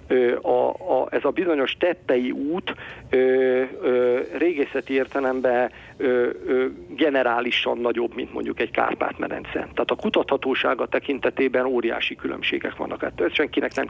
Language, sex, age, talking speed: Hungarian, male, 50-69, 100 wpm